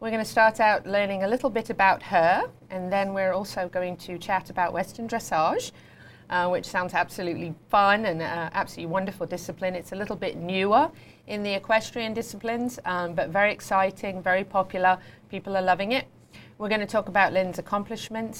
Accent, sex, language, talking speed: British, female, English, 180 wpm